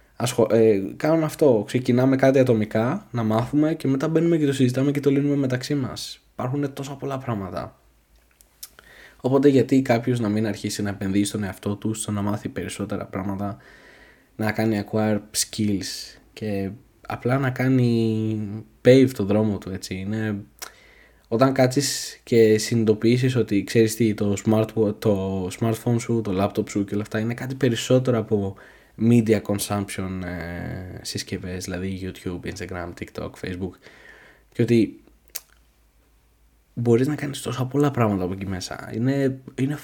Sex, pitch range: male, 100-130 Hz